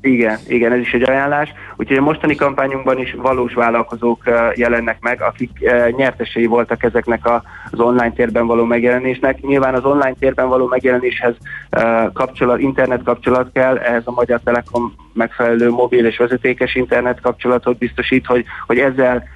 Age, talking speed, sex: 20-39, 160 wpm, male